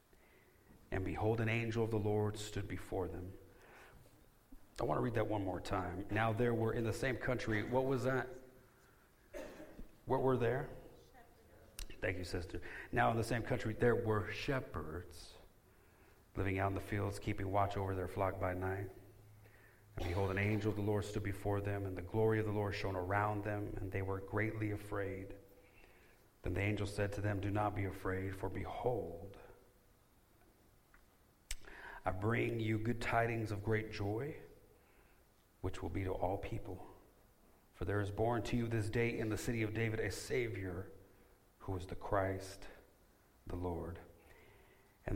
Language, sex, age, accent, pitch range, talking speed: English, male, 40-59, American, 95-115 Hz, 165 wpm